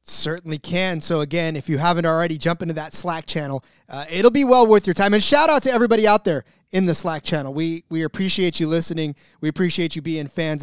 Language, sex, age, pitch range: English, male, 20-39, 160-225 Hz